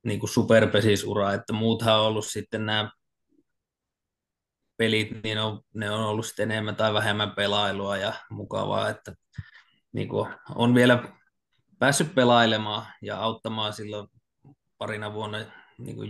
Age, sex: 20-39, male